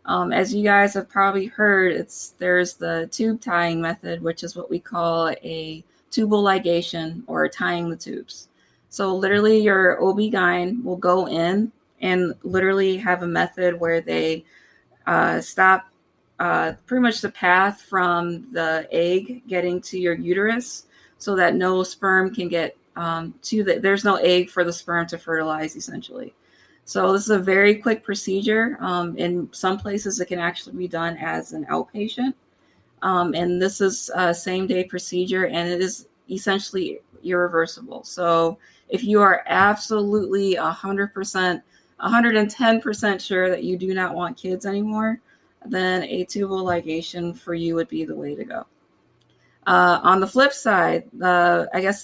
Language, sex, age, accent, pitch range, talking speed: English, female, 20-39, American, 175-205 Hz, 155 wpm